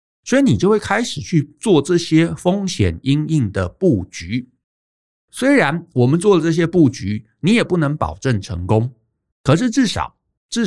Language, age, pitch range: Chinese, 50-69, 105-150 Hz